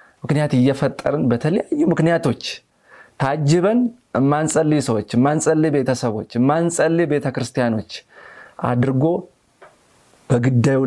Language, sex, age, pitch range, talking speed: Amharic, male, 30-49, 115-155 Hz, 70 wpm